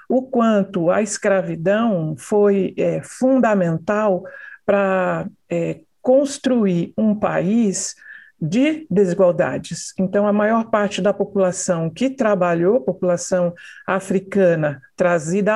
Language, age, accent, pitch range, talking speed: Portuguese, 60-79, Brazilian, 185-220 Hz, 90 wpm